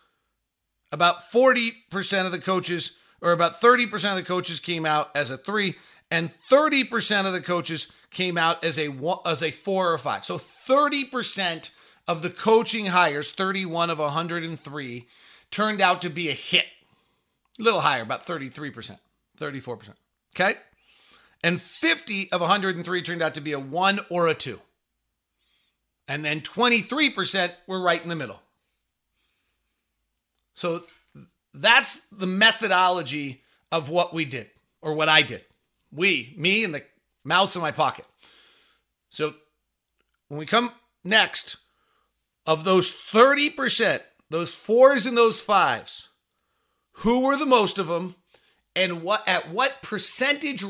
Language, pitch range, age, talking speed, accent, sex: English, 160-215 Hz, 40-59, 140 wpm, American, male